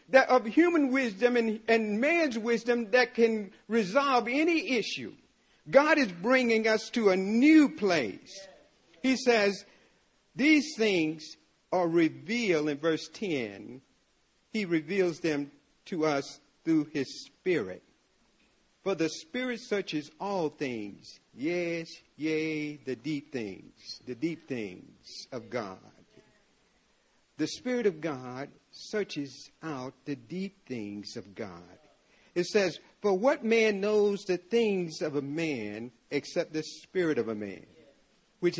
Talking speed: 130 wpm